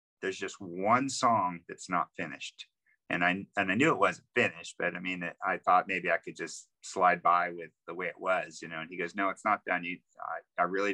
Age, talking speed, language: 50-69, 240 wpm, English